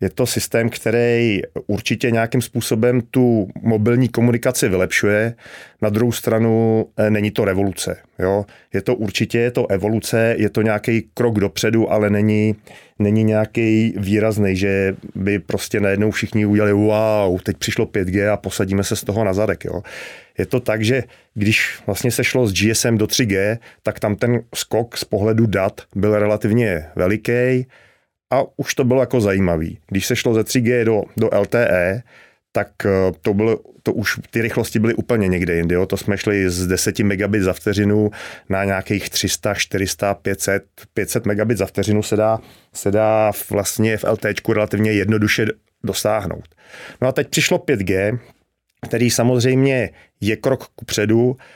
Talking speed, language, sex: 160 wpm, Czech, male